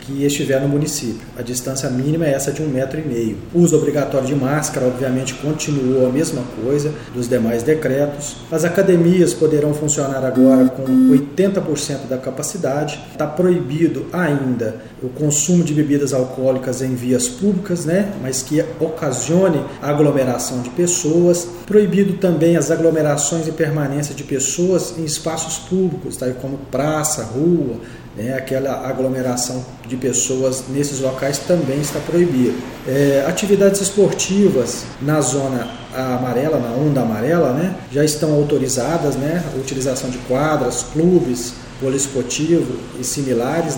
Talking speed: 140 wpm